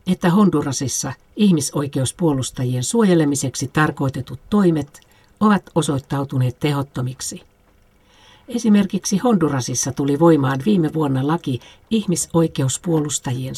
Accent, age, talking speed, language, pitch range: native, 60-79, 75 wpm, Finnish, 130-170 Hz